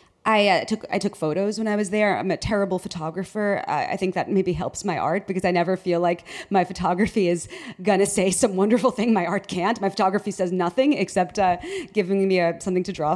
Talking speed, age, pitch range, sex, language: 230 wpm, 30-49, 175-215 Hz, female, English